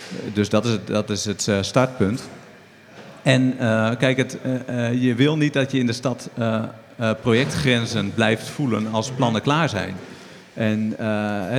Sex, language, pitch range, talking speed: male, Dutch, 110-130 Hz, 145 wpm